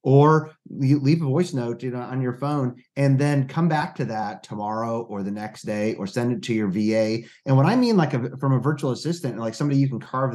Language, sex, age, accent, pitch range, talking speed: English, male, 30-49, American, 120-155 Hz, 250 wpm